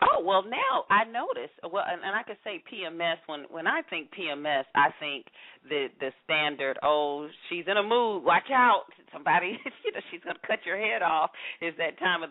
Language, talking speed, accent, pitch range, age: English, 205 wpm, American, 135-175 Hz, 40-59